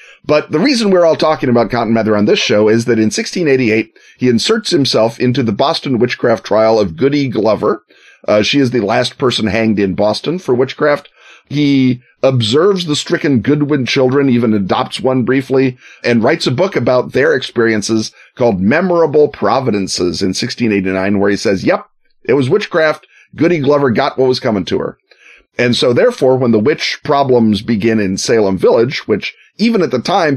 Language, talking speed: English, 180 wpm